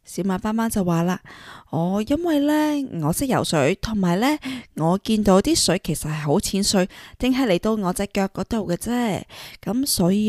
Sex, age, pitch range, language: female, 20-39, 170-235 Hz, Chinese